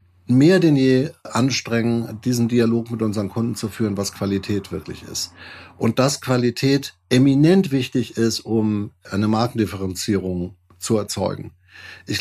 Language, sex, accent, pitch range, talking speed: German, male, German, 110-130 Hz, 135 wpm